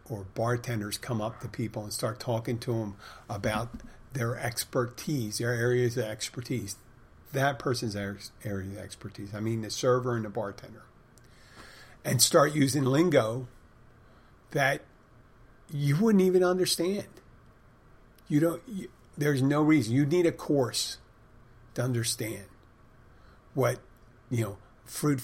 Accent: American